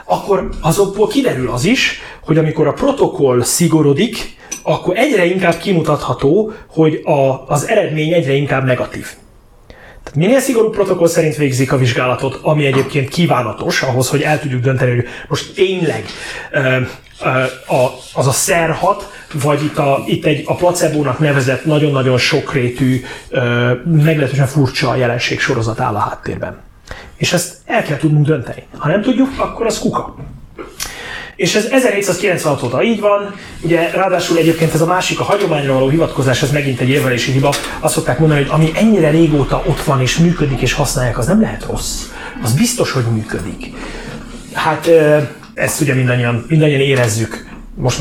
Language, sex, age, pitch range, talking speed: Hungarian, male, 30-49, 130-170 Hz, 150 wpm